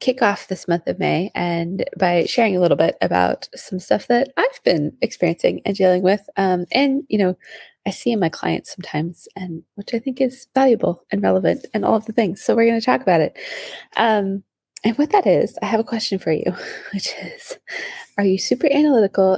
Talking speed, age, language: 215 wpm, 20-39, English